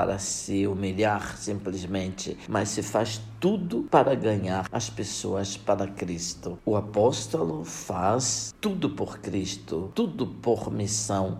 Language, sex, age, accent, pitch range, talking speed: Portuguese, male, 60-79, Brazilian, 100-125 Hz, 125 wpm